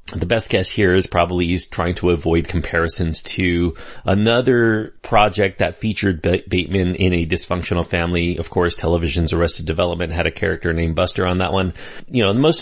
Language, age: English, 30-49